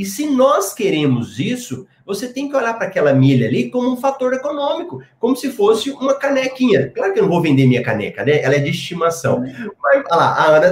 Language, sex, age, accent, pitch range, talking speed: Portuguese, male, 30-49, Brazilian, 155-255 Hz, 225 wpm